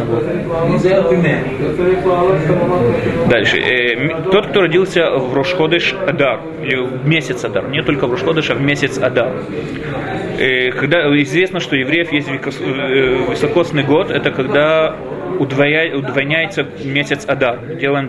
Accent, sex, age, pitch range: native, male, 20-39, 135-155 Hz